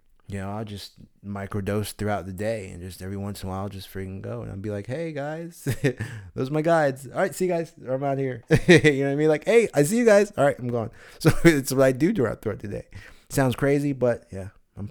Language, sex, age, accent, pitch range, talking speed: English, male, 30-49, American, 90-105 Hz, 270 wpm